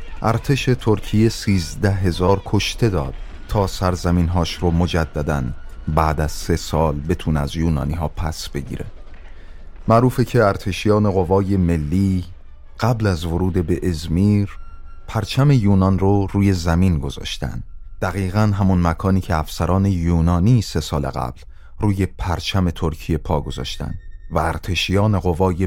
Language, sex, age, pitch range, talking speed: Persian, male, 30-49, 80-100 Hz, 125 wpm